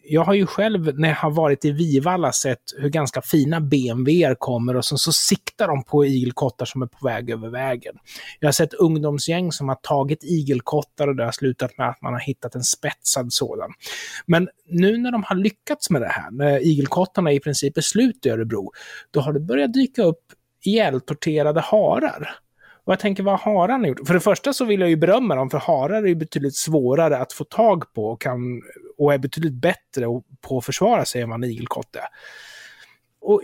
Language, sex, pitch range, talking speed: Swedish, male, 135-185 Hz, 200 wpm